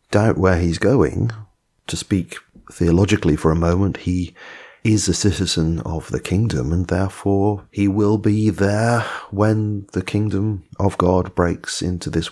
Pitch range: 90-110 Hz